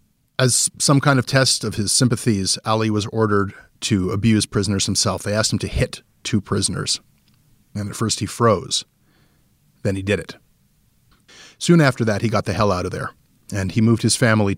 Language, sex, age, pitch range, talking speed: English, male, 30-49, 105-130 Hz, 190 wpm